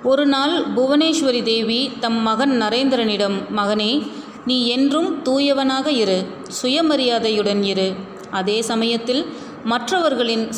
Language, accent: Tamil, native